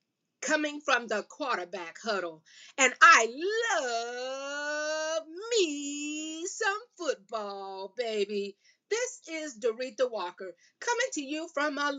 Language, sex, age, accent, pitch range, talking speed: English, female, 40-59, American, 220-320 Hz, 105 wpm